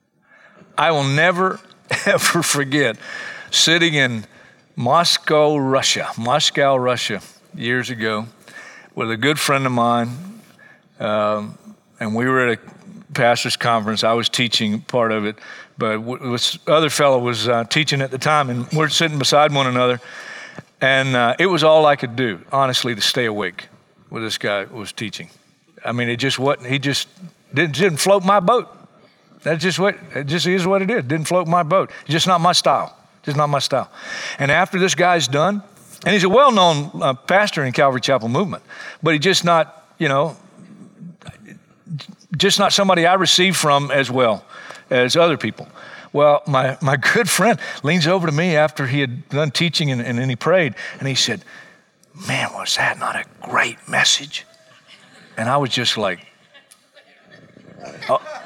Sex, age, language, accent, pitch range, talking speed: male, 50-69, English, American, 130-180 Hz, 165 wpm